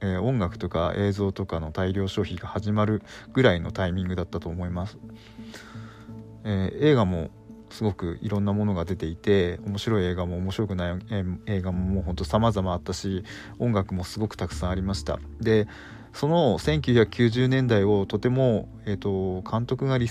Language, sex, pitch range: Japanese, male, 90-115 Hz